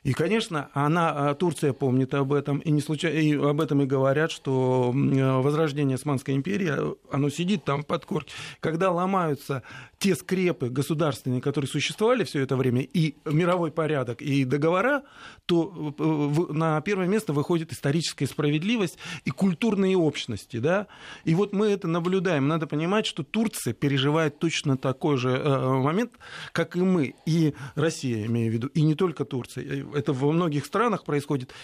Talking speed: 155 wpm